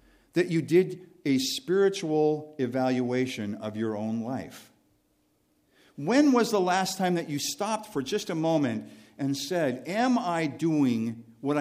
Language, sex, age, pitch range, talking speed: English, male, 50-69, 105-160 Hz, 145 wpm